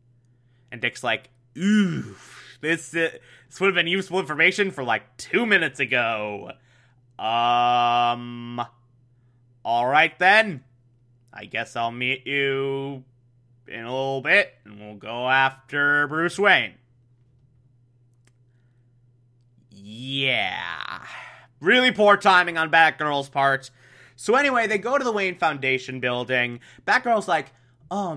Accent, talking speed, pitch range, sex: American, 115 wpm, 120-160 Hz, male